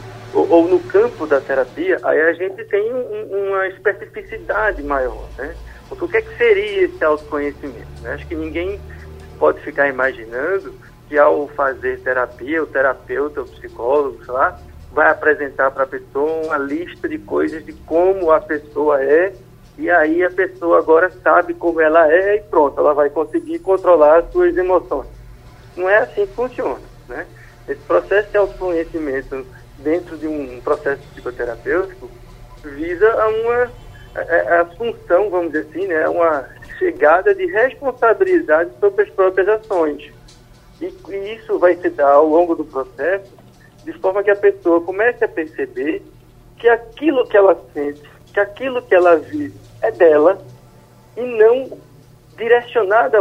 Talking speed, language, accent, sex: 155 wpm, Portuguese, Brazilian, male